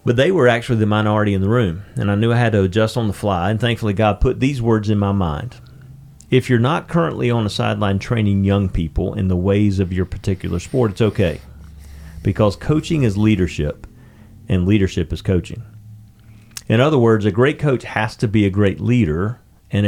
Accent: American